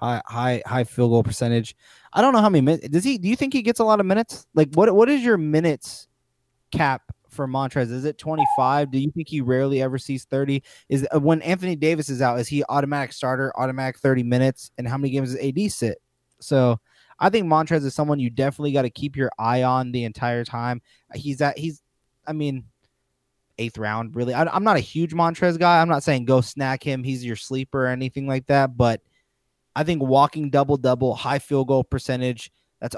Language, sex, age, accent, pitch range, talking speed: English, male, 20-39, American, 125-150 Hz, 220 wpm